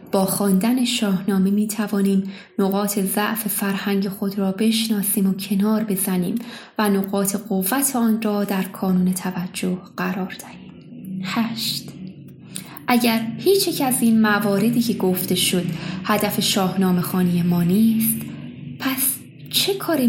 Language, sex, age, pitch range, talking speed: Persian, female, 20-39, 195-250 Hz, 120 wpm